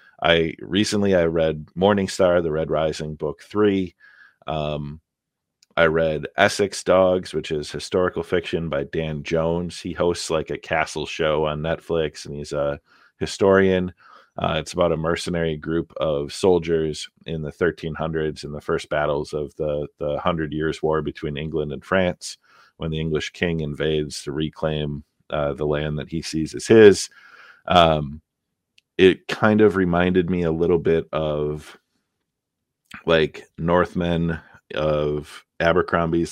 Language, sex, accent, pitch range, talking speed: English, male, American, 75-85 Hz, 145 wpm